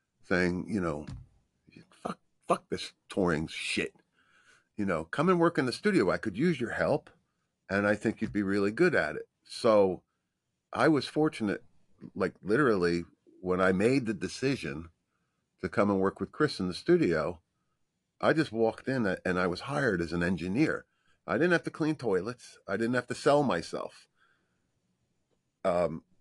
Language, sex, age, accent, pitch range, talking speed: English, male, 50-69, American, 90-115 Hz, 170 wpm